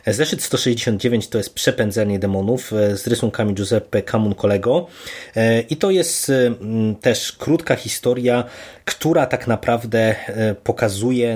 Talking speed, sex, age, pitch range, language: 110 wpm, male, 20-39, 100-120 Hz, Polish